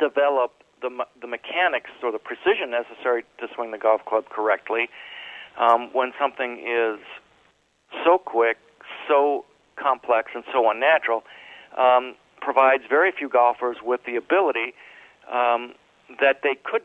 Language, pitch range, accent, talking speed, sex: English, 120-145 Hz, American, 130 wpm, male